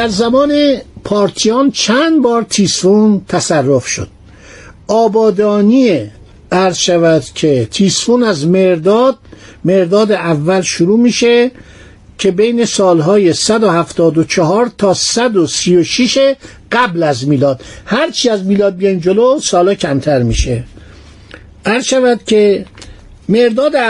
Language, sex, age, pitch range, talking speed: Persian, male, 60-79, 135-230 Hz, 100 wpm